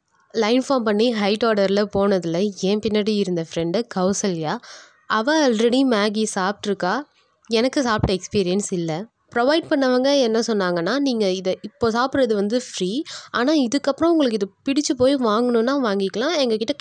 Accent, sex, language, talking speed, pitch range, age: native, female, Tamil, 135 wpm, 195-255 Hz, 20-39